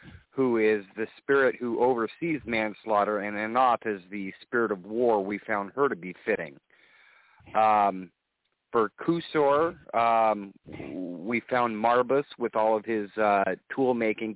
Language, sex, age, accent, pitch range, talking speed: English, male, 40-59, American, 100-125 Hz, 140 wpm